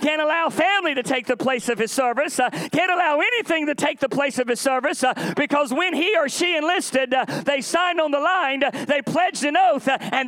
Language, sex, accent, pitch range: English, male, American, 225-310 Hz